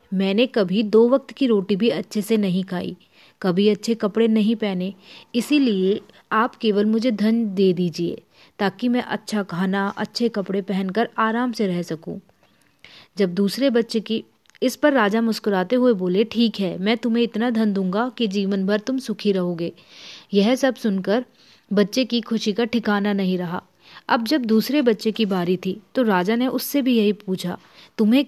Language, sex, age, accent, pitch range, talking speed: Hindi, female, 30-49, native, 195-235 Hz, 175 wpm